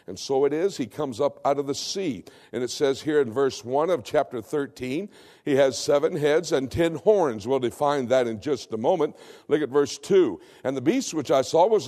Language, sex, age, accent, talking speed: English, male, 60-79, American, 230 wpm